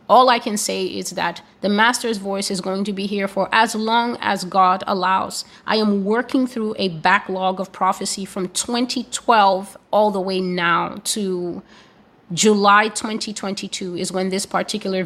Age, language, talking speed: 30-49, English, 165 wpm